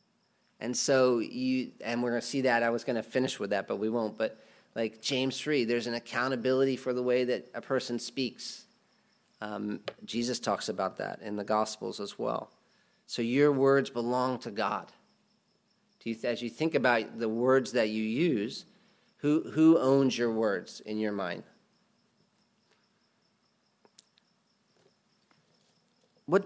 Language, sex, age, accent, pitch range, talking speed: English, male, 40-59, American, 120-200 Hz, 150 wpm